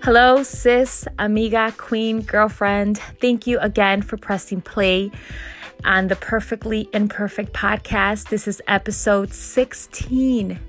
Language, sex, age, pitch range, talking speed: English, female, 20-39, 190-220 Hz, 110 wpm